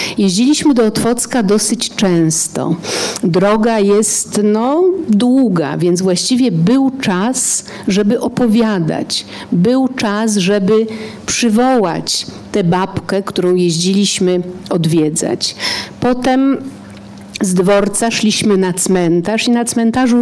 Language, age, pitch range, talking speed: Polish, 50-69, 180-240 Hz, 95 wpm